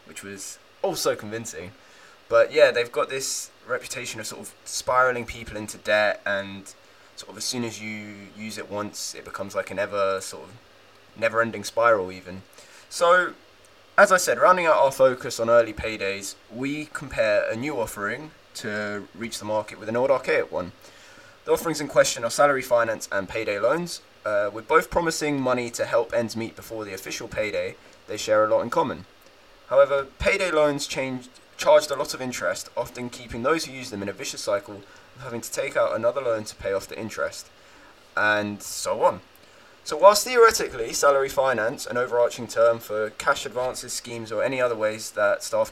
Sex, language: male, English